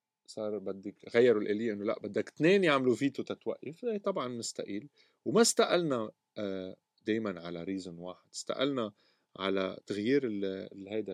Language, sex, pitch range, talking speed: Arabic, male, 95-125 Hz, 130 wpm